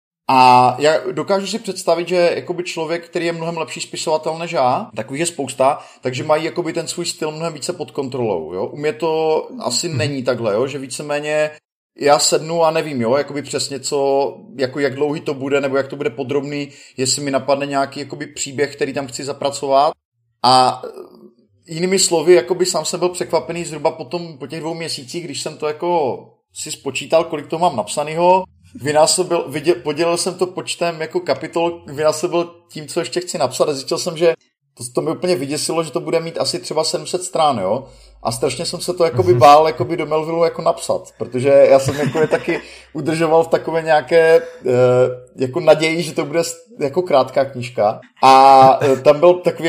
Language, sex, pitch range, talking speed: Slovak, male, 140-170 Hz, 185 wpm